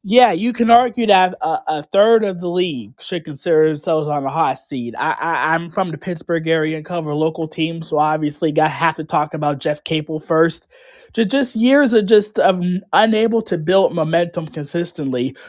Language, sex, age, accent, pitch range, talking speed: English, male, 20-39, American, 155-190 Hz, 195 wpm